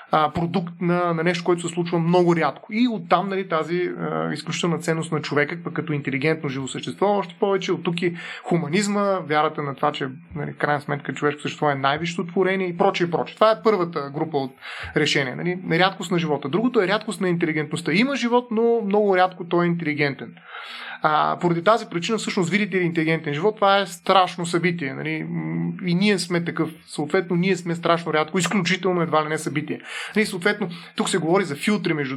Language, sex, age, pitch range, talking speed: Bulgarian, male, 30-49, 150-185 Hz, 195 wpm